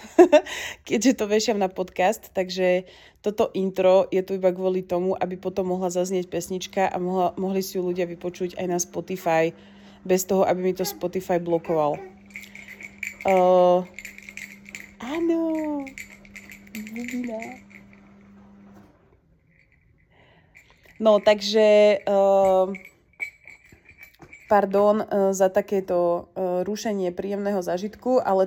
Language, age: Slovak, 20-39